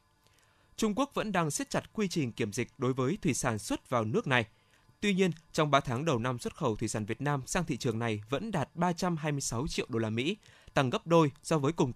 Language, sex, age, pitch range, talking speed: Vietnamese, male, 20-39, 115-160 Hz, 240 wpm